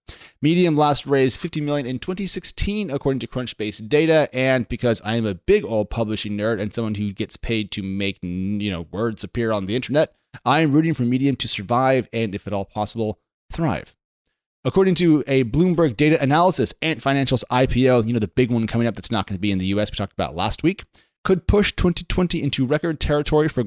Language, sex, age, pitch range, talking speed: English, male, 30-49, 105-145 Hz, 210 wpm